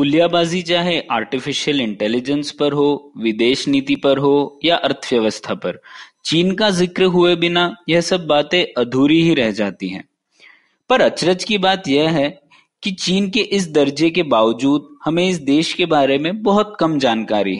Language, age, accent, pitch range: Hindi, 20-39, native, 130-180 Hz